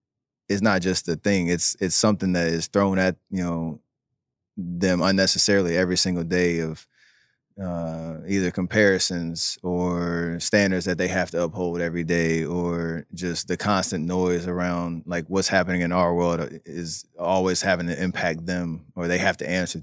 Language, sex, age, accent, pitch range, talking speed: English, male, 20-39, American, 85-100 Hz, 165 wpm